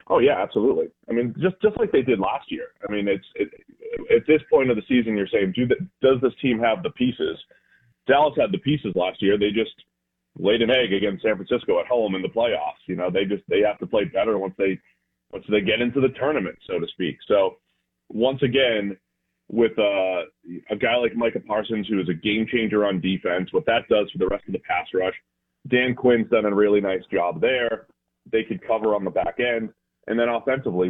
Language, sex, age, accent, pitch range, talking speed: English, male, 30-49, American, 95-120 Hz, 220 wpm